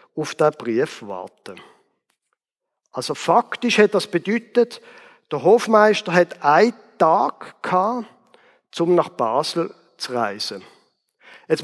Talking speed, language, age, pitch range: 105 wpm, German, 50-69, 165-235 Hz